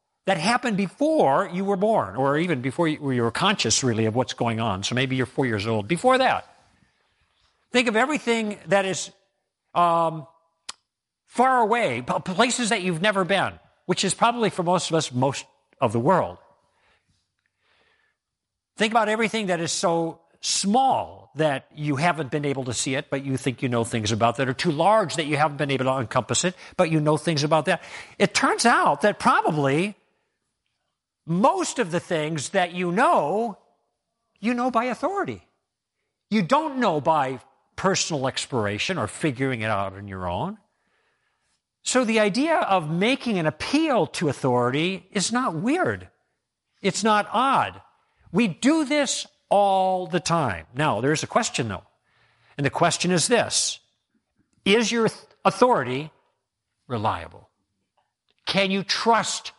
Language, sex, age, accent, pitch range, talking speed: English, male, 50-69, American, 135-215 Hz, 155 wpm